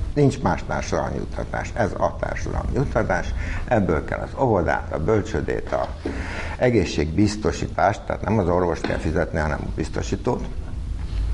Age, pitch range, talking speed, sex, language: 60-79, 85-105 Hz, 130 wpm, male, Hungarian